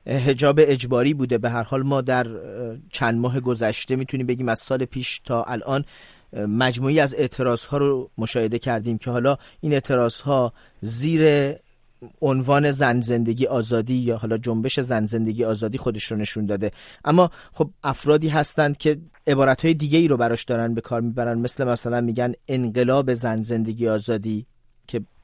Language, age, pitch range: Persian, 40-59, 120-150 Hz